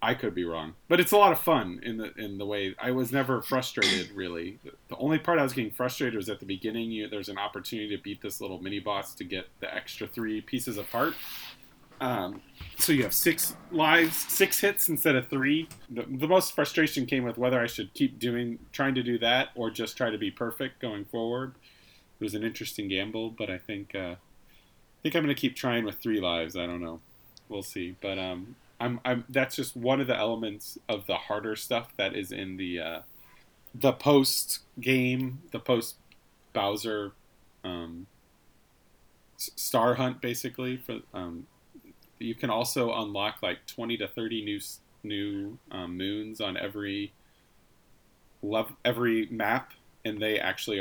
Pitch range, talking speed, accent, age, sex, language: 100-130 Hz, 185 wpm, American, 30-49, male, English